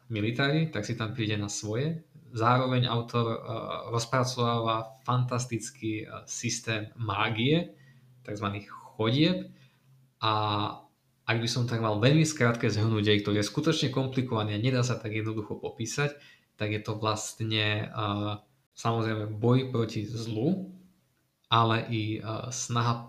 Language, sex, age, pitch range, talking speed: Slovak, male, 20-39, 110-125 Hz, 120 wpm